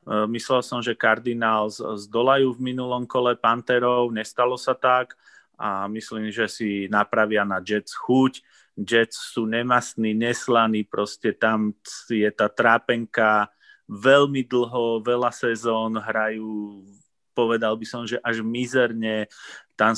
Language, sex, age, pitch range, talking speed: Slovak, male, 30-49, 110-125 Hz, 125 wpm